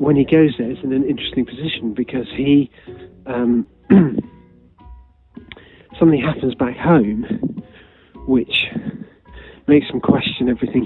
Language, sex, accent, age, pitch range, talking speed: English, male, British, 40-59, 120-150 Hz, 115 wpm